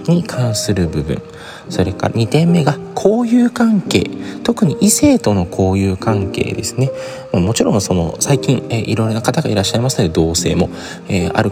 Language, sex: Japanese, male